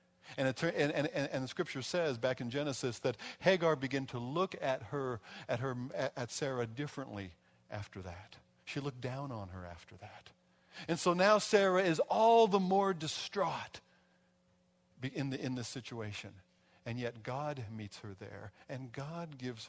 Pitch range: 115-170 Hz